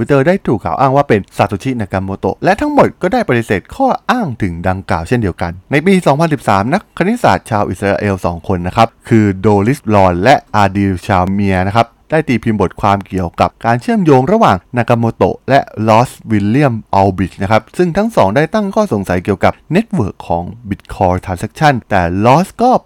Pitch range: 95-145 Hz